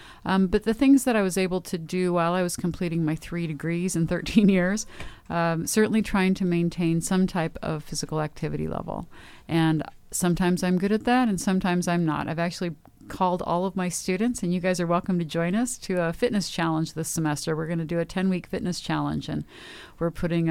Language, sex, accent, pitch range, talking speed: English, female, American, 160-185 Hz, 215 wpm